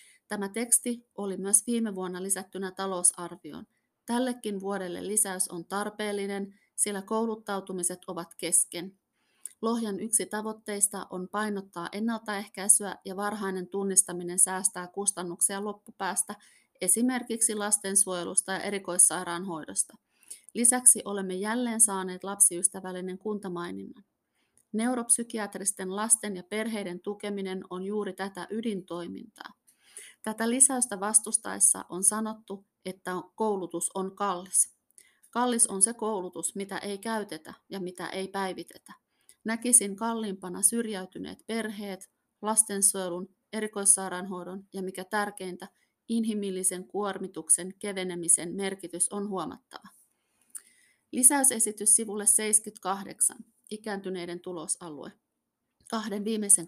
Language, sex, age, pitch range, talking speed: Finnish, female, 30-49, 185-215 Hz, 95 wpm